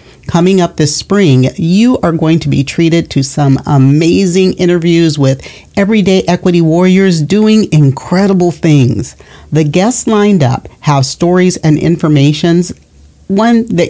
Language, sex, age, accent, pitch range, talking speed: English, male, 40-59, American, 145-195 Hz, 135 wpm